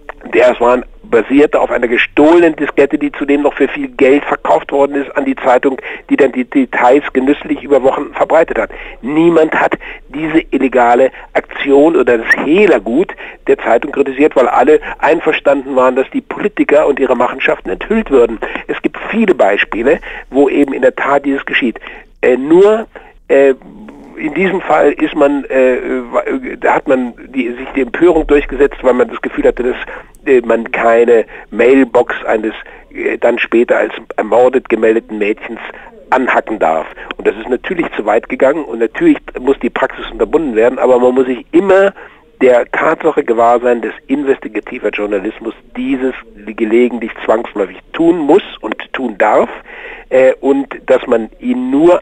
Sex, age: male, 60-79